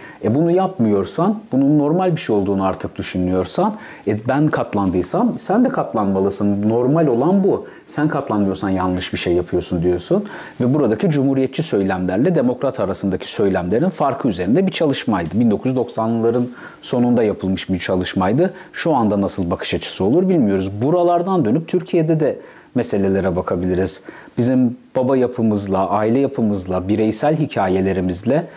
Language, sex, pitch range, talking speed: Turkish, male, 100-135 Hz, 130 wpm